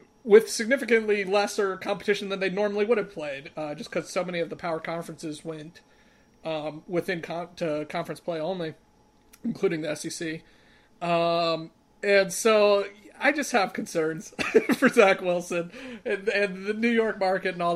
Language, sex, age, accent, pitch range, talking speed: English, male, 40-59, American, 165-210 Hz, 155 wpm